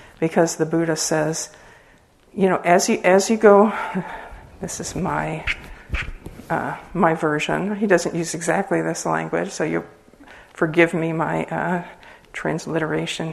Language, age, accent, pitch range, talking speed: English, 50-69, American, 160-180 Hz, 135 wpm